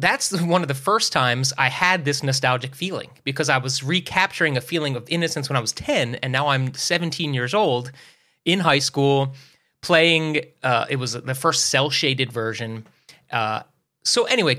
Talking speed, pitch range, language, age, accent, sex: 180 wpm, 120-160 Hz, English, 30-49, American, male